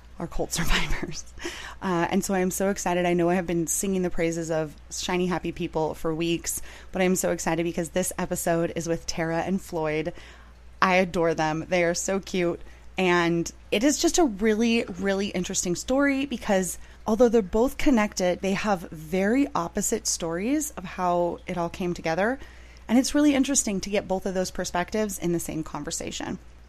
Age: 30-49